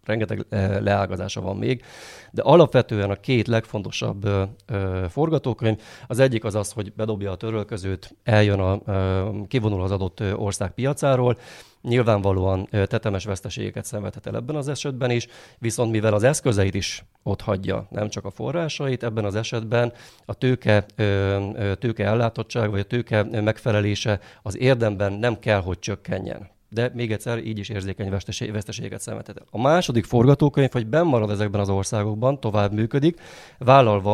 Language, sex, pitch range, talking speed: Hungarian, male, 100-120 Hz, 140 wpm